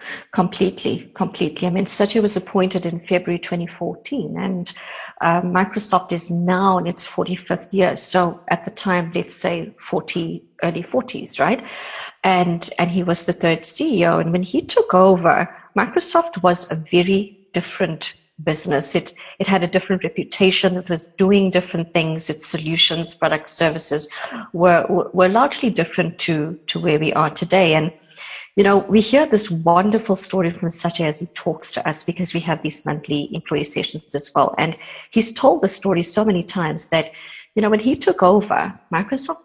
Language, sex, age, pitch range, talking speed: English, female, 50-69, 165-190 Hz, 170 wpm